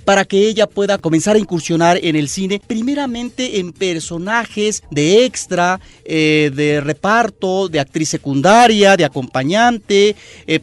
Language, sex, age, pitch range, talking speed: Spanish, male, 40-59, 155-205 Hz, 135 wpm